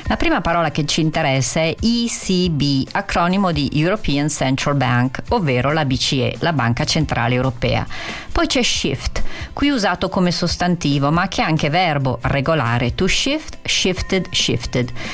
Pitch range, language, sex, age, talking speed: 135-185 Hz, Italian, female, 40-59, 145 wpm